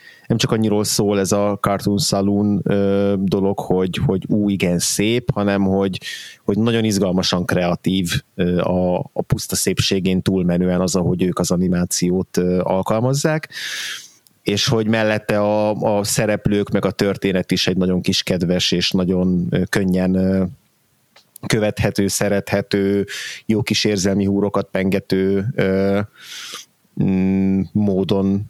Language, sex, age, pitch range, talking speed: Hungarian, male, 30-49, 95-105 Hz, 120 wpm